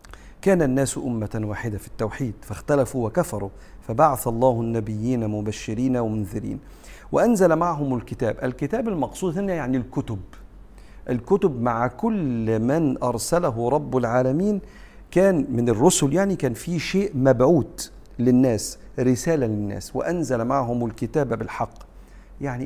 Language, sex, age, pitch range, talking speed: Arabic, male, 50-69, 115-145 Hz, 115 wpm